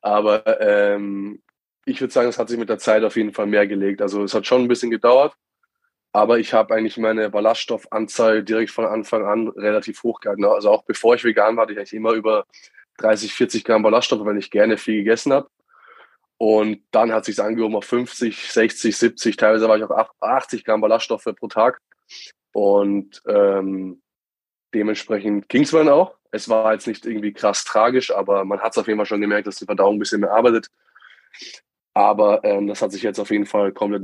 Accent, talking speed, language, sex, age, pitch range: German, 205 wpm, German, male, 20-39, 105-115 Hz